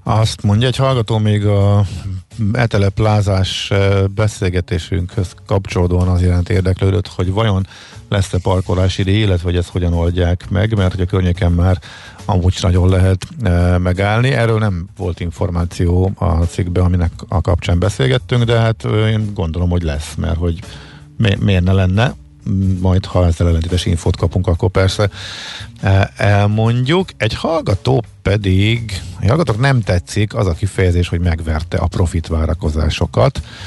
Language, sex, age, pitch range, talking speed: Hungarian, male, 50-69, 90-105 Hz, 130 wpm